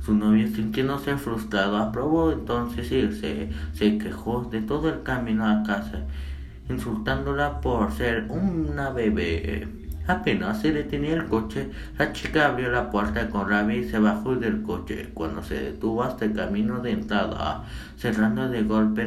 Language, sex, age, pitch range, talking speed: Spanish, male, 50-69, 80-115 Hz, 155 wpm